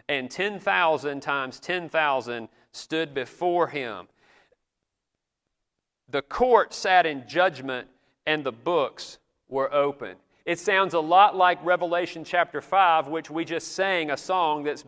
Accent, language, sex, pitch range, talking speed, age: American, English, male, 140-185 Hz, 130 wpm, 40-59